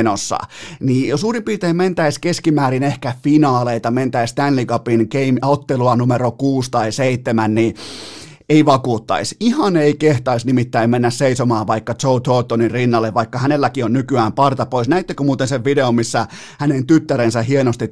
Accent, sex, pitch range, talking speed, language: native, male, 120-145 Hz, 145 wpm, Finnish